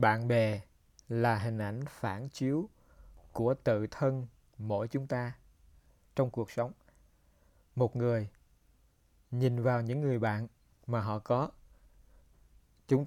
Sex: male